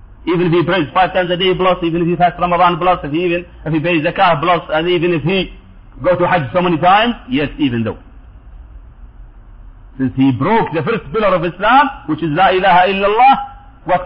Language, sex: English, male